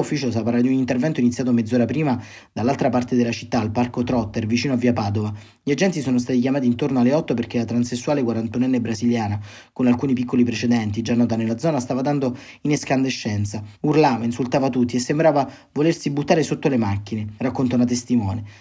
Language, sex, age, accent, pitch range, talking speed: Italian, male, 30-49, native, 115-140 Hz, 185 wpm